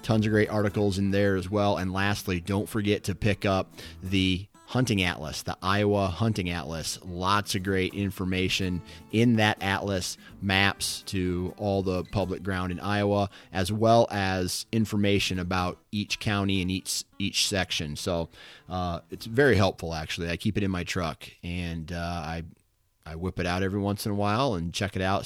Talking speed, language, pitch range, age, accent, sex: 180 wpm, English, 90-105 Hz, 30-49, American, male